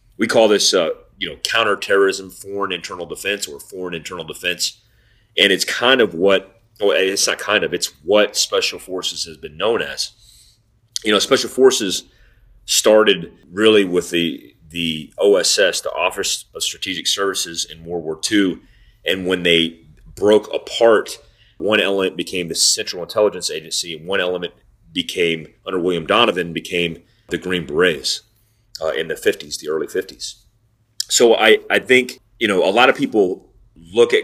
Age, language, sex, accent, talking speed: 30-49, English, male, American, 160 wpm